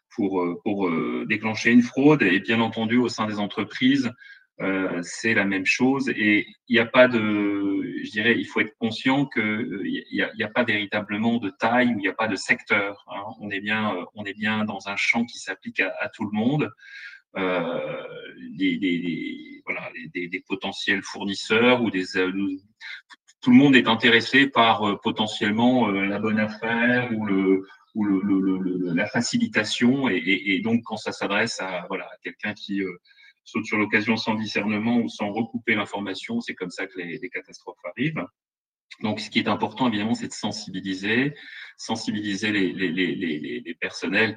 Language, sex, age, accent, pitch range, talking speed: French, male, 30-49, French, 100-125 Hz, 180 wpm